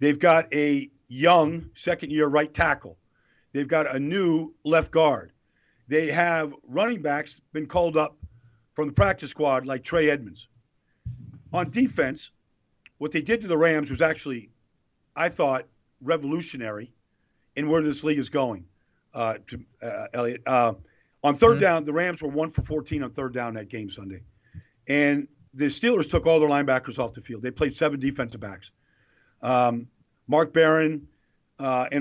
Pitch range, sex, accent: 125-160 Hz, male, American